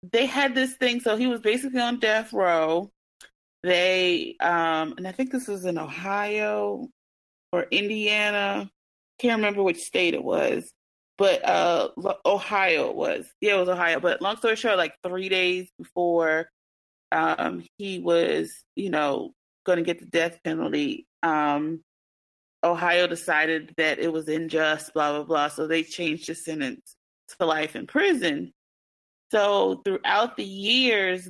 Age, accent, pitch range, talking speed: 30-49, American, 165-225 Hz, 150 wpm